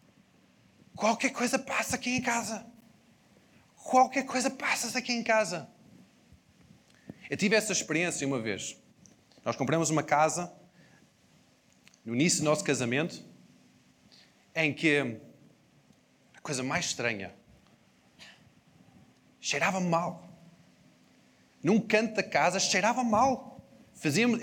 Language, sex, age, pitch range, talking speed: Portuguese, male, 30-49, 160-230 Hz, 105 wpm